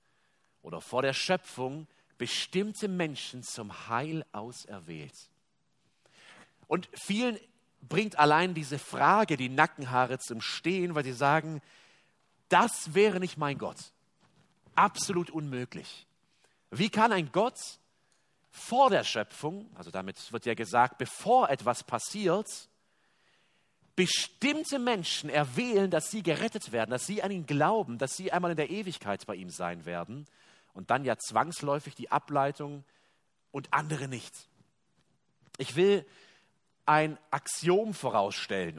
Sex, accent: male, German